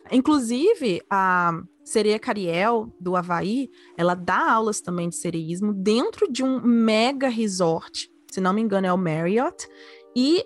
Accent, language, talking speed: Brazilian, Portuguese, 145 wpm